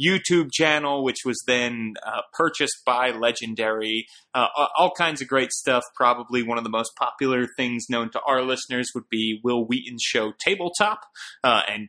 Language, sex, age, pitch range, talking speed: English, male, 30-49, 120-155 Hz, 170 wpm